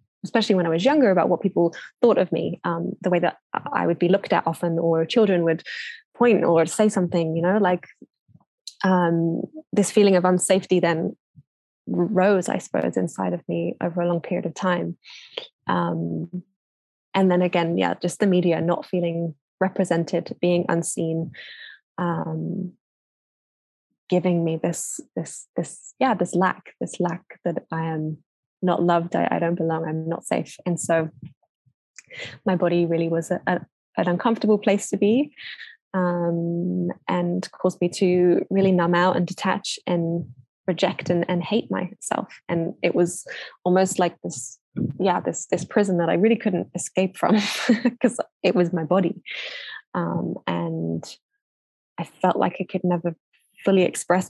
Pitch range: 170-190 Hz